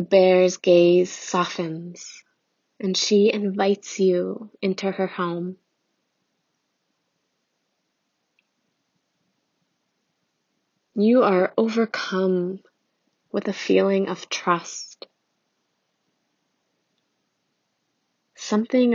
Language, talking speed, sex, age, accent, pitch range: English, 65 wpm, female, 20-39, American, 180-205 Hz